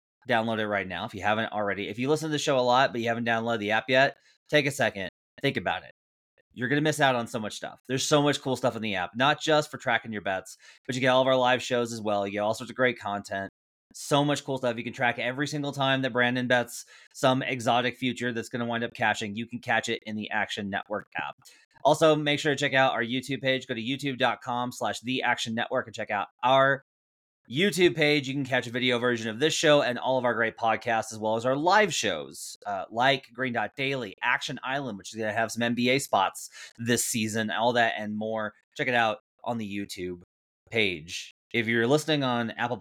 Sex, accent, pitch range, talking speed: male, American, 115-140 Hz, 245 wpm